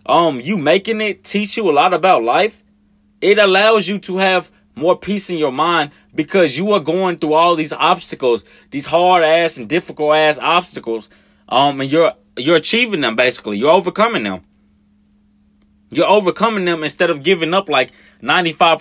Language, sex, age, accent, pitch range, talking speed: English, male, 20-39, American, 125-195 Hz, 170 wpm